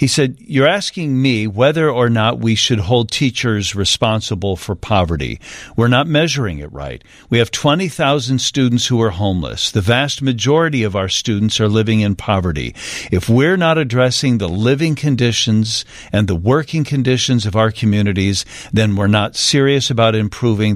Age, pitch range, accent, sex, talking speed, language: 50-69, 105-130 Hz, American, male, 165 wpm, English